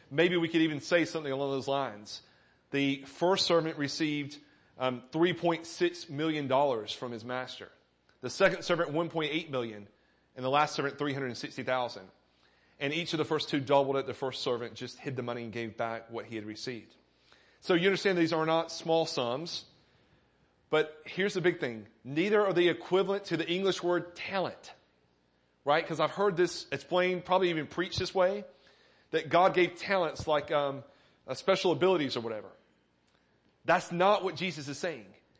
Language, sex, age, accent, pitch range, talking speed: English, male, 30-49, American, 130-175 Hz, 170 wpm